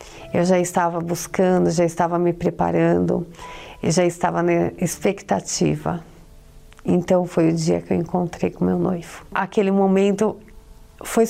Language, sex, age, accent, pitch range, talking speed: Portuguese, female, 40-59, Brazilian, 175-225 Hz, 140 wpm